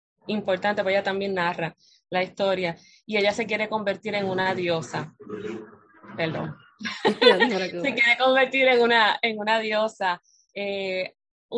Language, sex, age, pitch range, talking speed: Spanish, female, 20-39, 190-230 Hz, 130 wpm